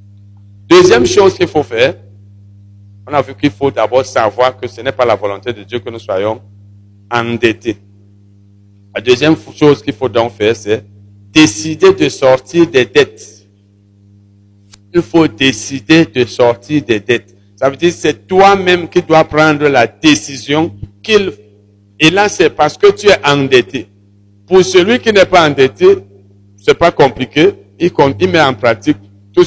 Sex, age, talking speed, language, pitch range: male, 60-79, 160 wpm, French, 100-165 Hz